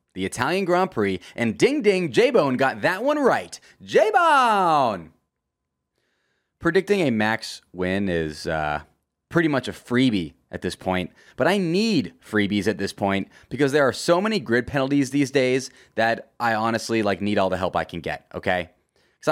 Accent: American